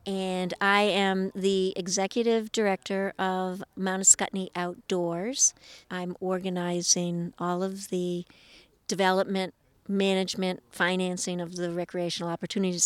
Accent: American